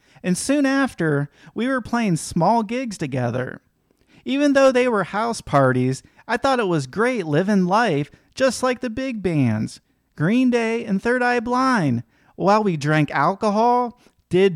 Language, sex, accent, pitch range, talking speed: English, male, American, 155-245 Hz, 155 wpm